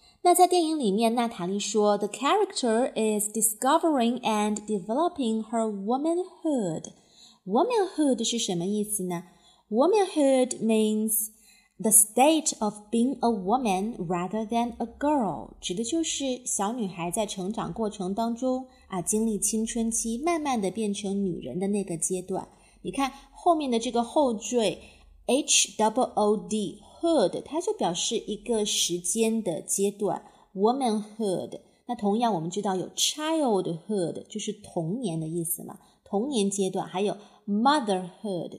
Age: 30-49